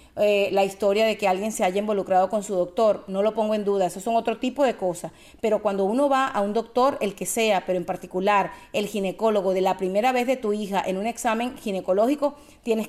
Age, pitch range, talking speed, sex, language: 40-59, 200-255 Hz, 235 wpm, female, Spanish